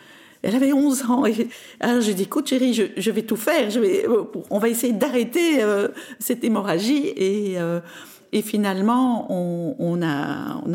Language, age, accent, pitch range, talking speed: French, 50-69, French, 170-255 Hz, 185 wpm